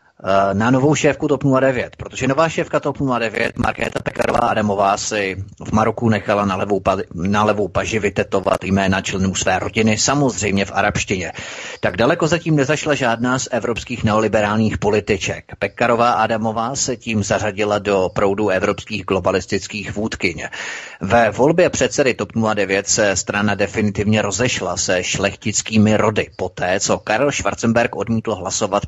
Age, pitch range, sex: 30-49, 100-120 Hz, male